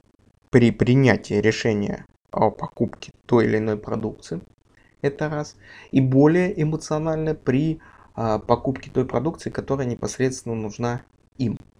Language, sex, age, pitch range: Russian, male, 20-39, 115-155 Hz